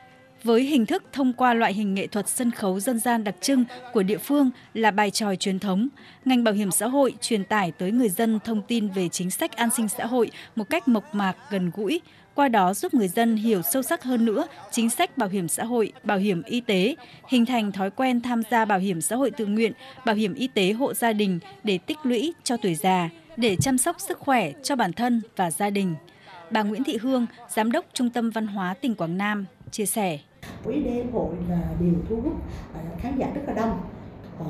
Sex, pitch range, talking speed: female, 180-235 Hz, 230 wpm